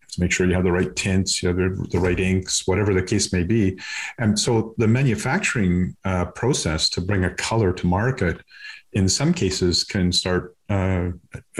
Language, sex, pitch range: English, male, 90-100 Hz